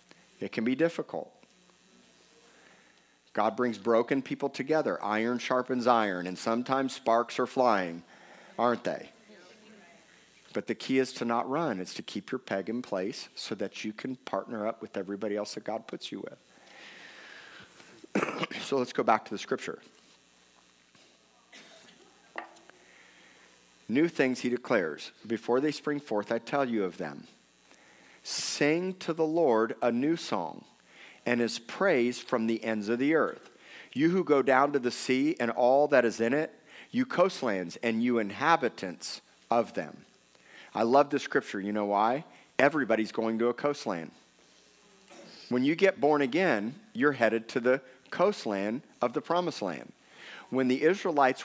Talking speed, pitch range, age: 155 wpm, 110-140 Hz, 50-69